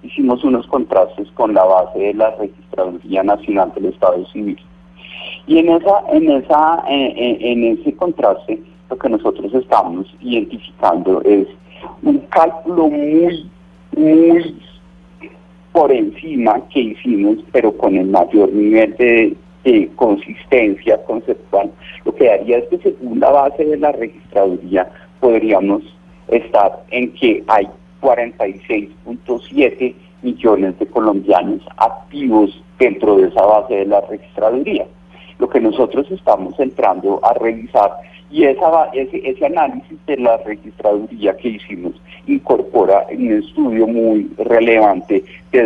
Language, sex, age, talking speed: Spanish, male, 40-59, 130 wpm